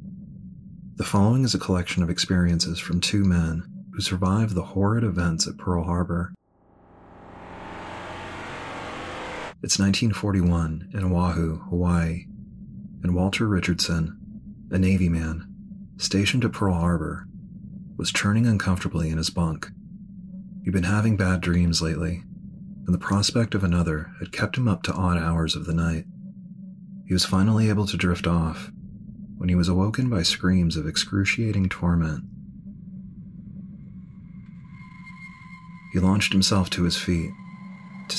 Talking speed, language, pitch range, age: 130 wpm, English, 85-115 Hz, 30-49